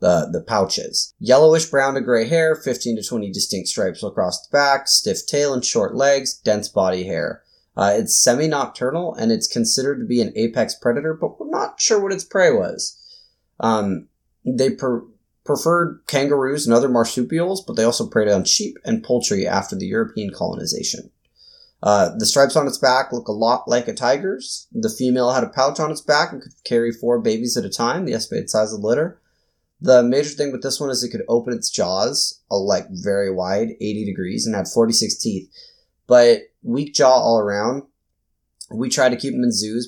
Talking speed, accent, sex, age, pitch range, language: 195 wpm, American, male, 30-49, 110-145 Hz, English